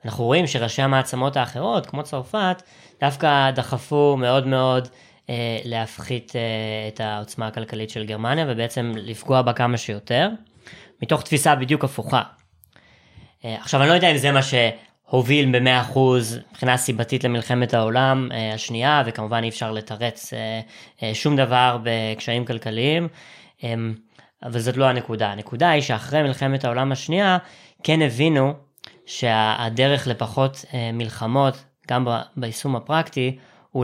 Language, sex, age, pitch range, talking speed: Hebrew, female, 20-39, 115-135 Hz, 135 wpm